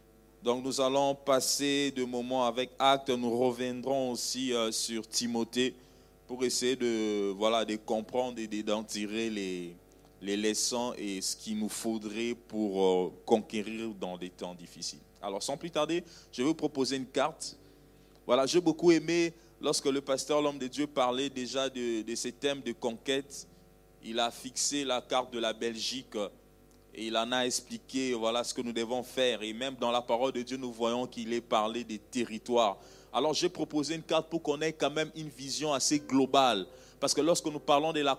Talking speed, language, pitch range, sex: 185 wpm, French, 115-140 Hz, male